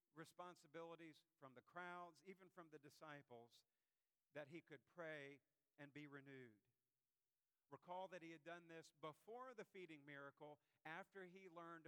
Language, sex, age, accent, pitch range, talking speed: English, male, 50-69, American, 135-170 Hz, 140 wpm